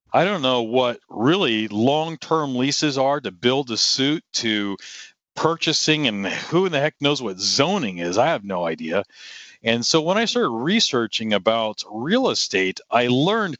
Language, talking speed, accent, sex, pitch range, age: English, 170 wpm, American, male, 110-145 Hz, 40-59